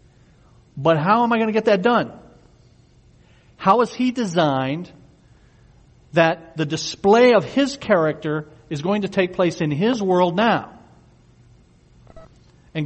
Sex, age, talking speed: male, 50-69, 135 wpm